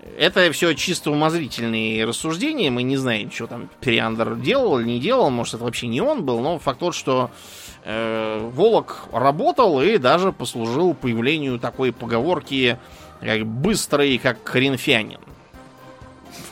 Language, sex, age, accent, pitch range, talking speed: Russian, male, 20-39, native, 115-140 Hz, 140 wpm